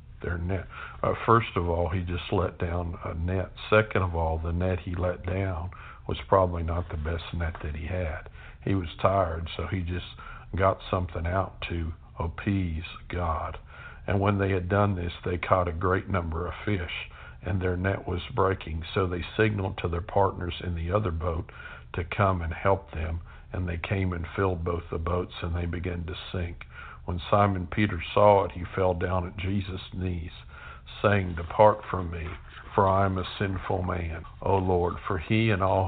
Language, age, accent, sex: English, 60-79, American, male